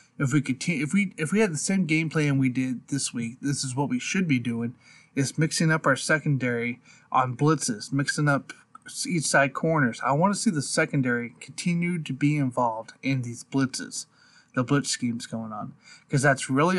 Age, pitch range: 30-49, 125-150 Hz